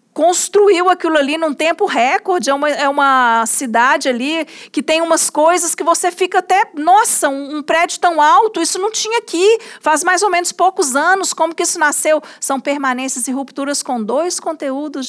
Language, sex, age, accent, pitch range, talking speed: Portuguese, female, 50-69, Brazilian, 240-320 Hz, 185 wpm